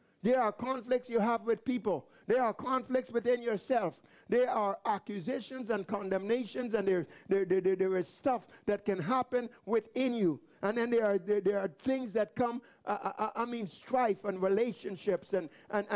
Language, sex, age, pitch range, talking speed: English, male, 60-79, 200-245 Hz, 175 wpm